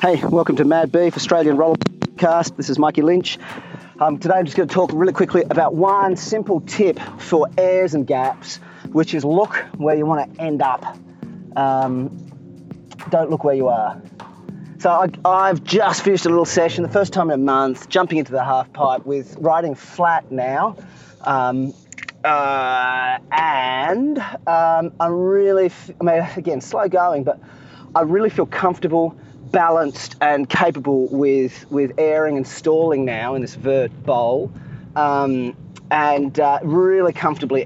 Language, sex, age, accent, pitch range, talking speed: English, male, 30-49, Australian, 135-175 Hz, 160 wpm